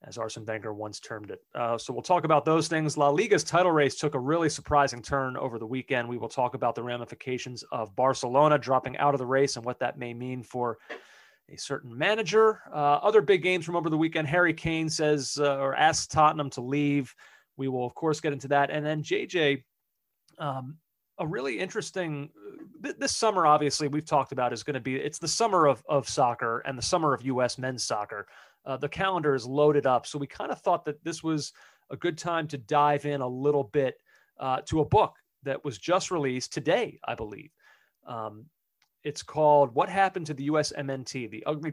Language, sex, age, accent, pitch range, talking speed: English, male, 30-49, American, 130-160 Hz, 210 wpm